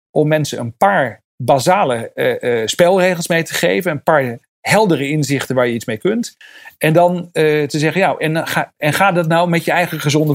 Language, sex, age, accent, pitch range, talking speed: Dutch, male, 40-59, Dutch, 135-170 Hz, 205 wpm